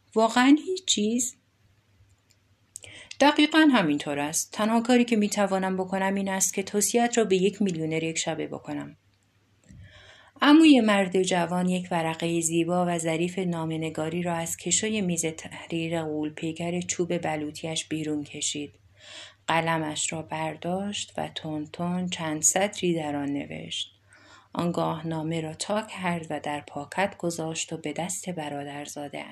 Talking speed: 130 wpm